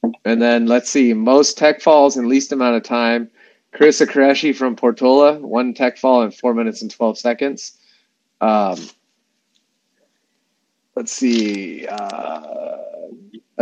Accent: American